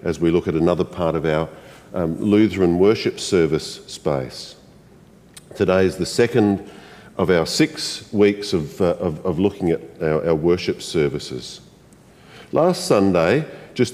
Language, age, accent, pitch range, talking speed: English, 50-69, Australian, 95-135 Hz, 140 wpm